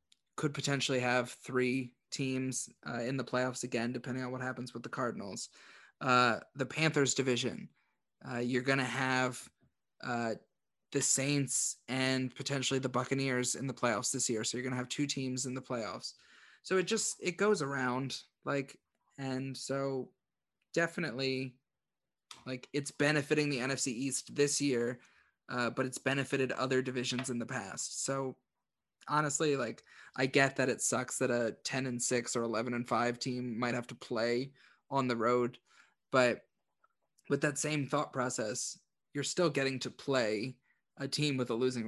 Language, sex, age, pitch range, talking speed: English, male, 20-39, 125-140 Hz, 165 wpm